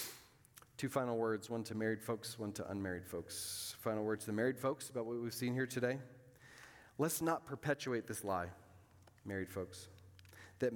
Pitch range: 110-150 Hz